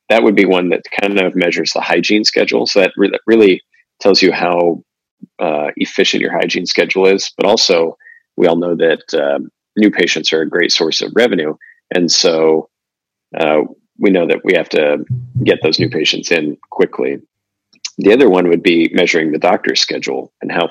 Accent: American